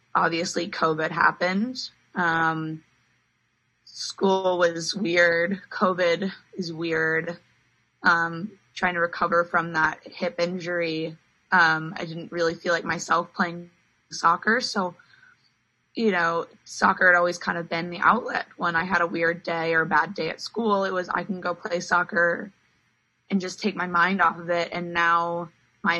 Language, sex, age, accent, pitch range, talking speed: English, female, 20-39, American, 165-185 Hz, 155 wpm